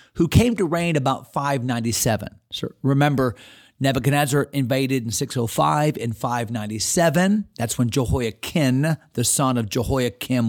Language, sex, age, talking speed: English, male, 40-59, 120 wpm